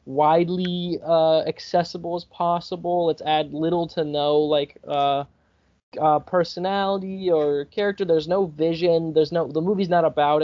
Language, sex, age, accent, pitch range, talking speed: English, male, 20-39, American, 145-175 Hz, 145 wpm